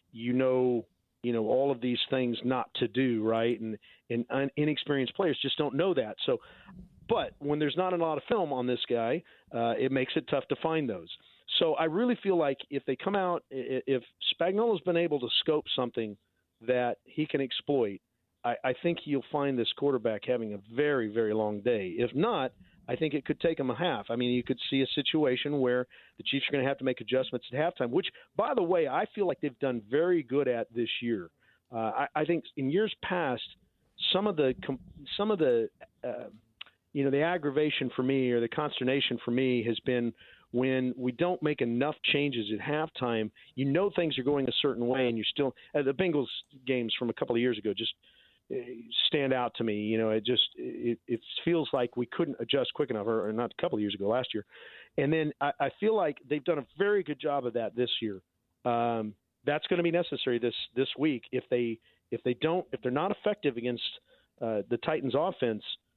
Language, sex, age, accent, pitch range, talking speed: English, male, 50-69, American, 120-150 Hz, 215 wpm